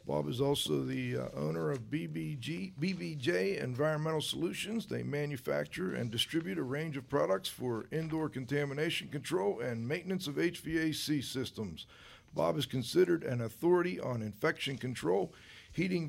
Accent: American